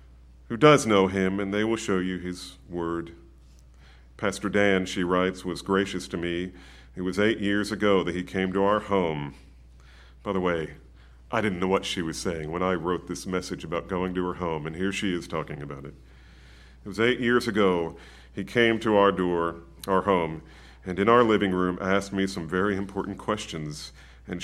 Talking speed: 200 wpm